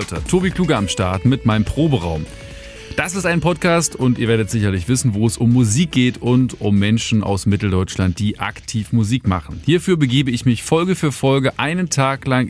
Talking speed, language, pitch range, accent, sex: 190 wpm, German, 100-135 Hz, German, male